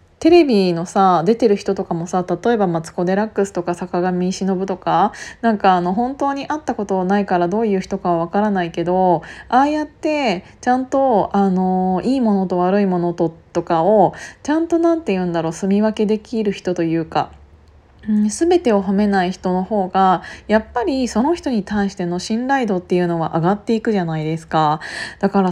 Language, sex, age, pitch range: Japanese, female, 20-39, 180-230 Hz